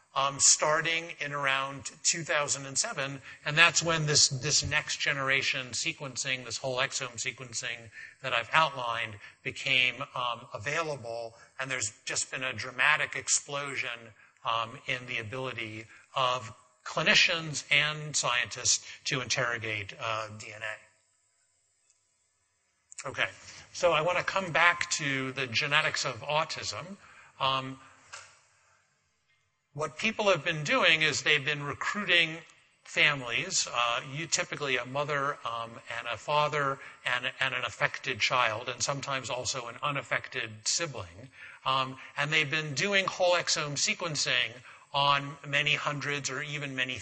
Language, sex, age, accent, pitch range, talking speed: English, male, 50-69, American, 125-150 Hz, 125 wpm